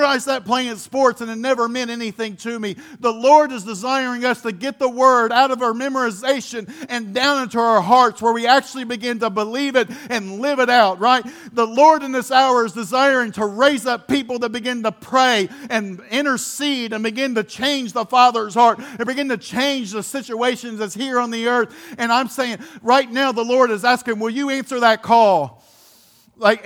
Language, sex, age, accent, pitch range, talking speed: English, male, 50-69, American, 225-265 Hz, 205 wpm